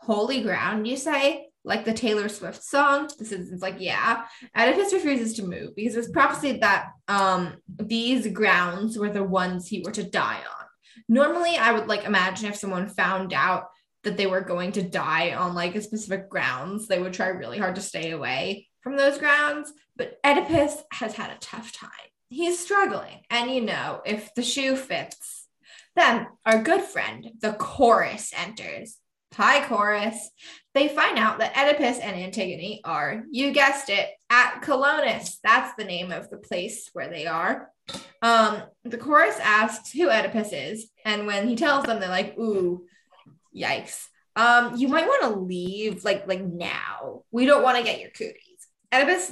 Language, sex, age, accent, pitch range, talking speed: English, female, 10-29, American, 195-265 Hz, 175 wpm